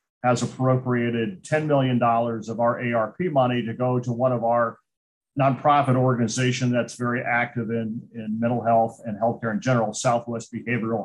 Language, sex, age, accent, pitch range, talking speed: English, male, 50-69, American, 120-140 Hz, 155 wpm